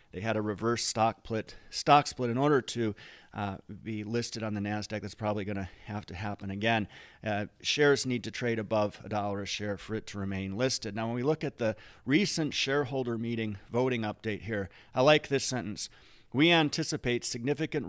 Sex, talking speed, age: male, 195 wpm, 40-59